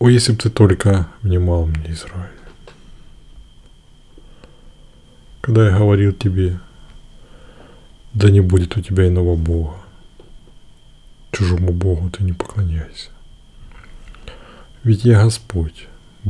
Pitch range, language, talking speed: 90-105 Hz, Russian, 100 wpm